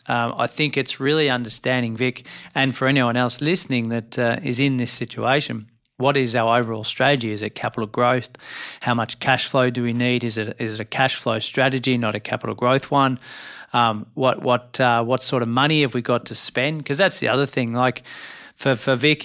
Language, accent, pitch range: English, Australian, 120-135 Hz